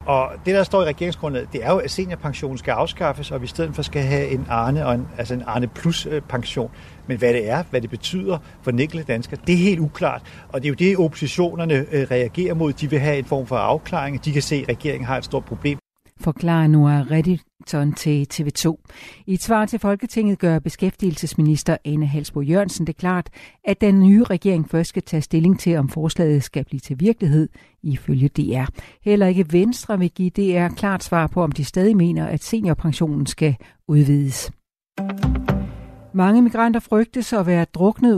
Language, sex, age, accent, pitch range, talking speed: Danish, male, 60-79, native, 145-185 Hz, 195 wpm